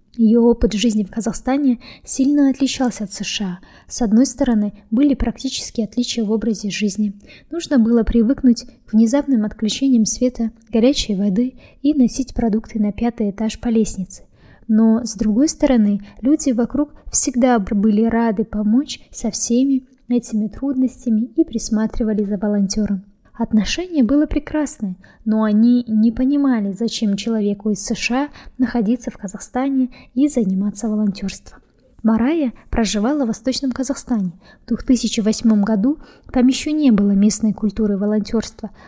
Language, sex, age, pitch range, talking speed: Russian, female, 20-39, 215-255 Hz, 130 wpm